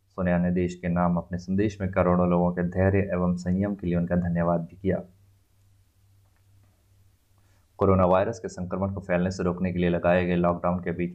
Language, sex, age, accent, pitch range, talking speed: Hindi, male, 20-39, native, 85-95 Hz, 190 wpm